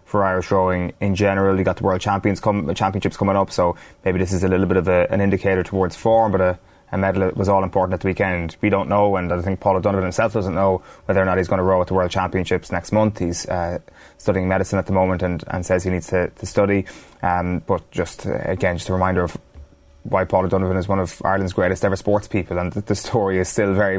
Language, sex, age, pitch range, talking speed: English, male, 20-39, 90-95 Hz, 255 wpm